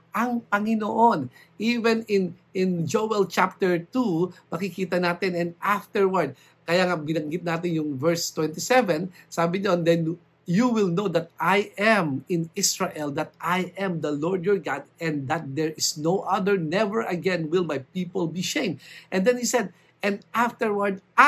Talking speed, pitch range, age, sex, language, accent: 155 wpm, 165-215 Hz, 50-69, male, English, Filipino